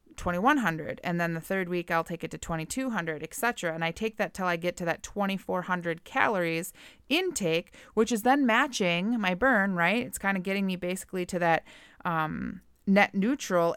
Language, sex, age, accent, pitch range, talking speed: English, female, 30-49, American, 170-220 Hz, 185 wpm